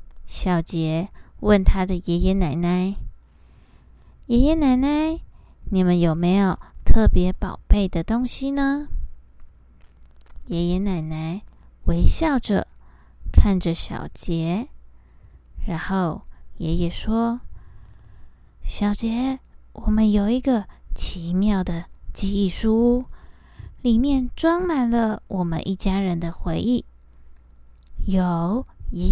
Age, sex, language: 20-39, female, Chinese